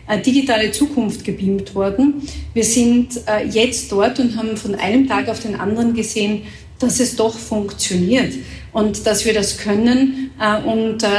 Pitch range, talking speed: 210-250 Hz, 145 wpm